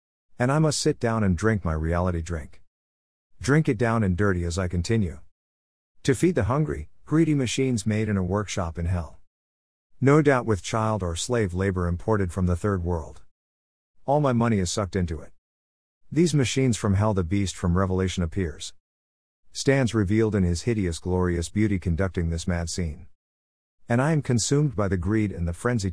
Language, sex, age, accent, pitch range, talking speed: English, male, 50-69, American, 85-110 Hz, 185 wpm